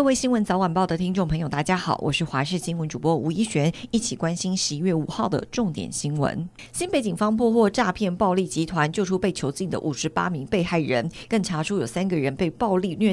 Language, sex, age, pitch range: Chinese, female, 50-69, 160-210 Hz